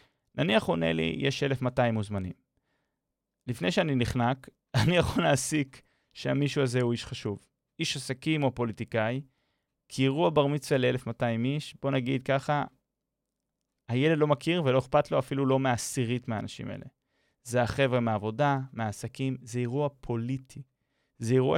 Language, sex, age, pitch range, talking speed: Hebrew, male, 30-49, 120-145 Hz, 140 wpm